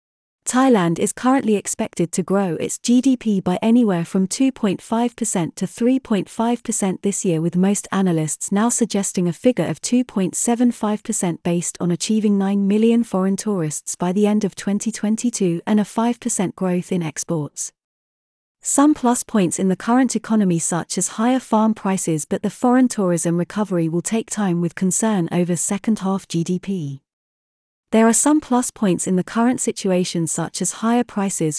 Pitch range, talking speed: 175-225 Hz, 150 wpm